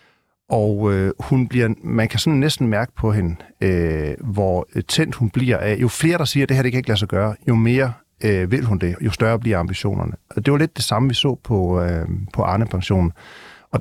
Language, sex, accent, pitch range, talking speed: Danish, male, native, 100-130 Hz, 235 wpm